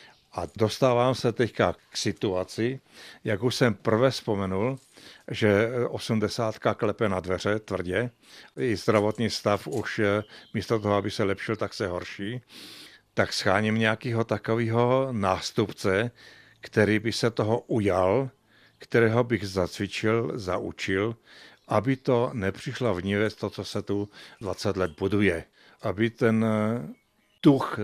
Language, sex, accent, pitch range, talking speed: Czech, male, native, 100-115 Hz, 125 wpm